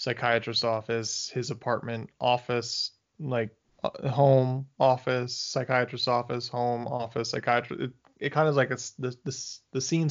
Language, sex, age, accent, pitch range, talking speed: English, male, 20-39, American, 120-145 Hz, 140 wpm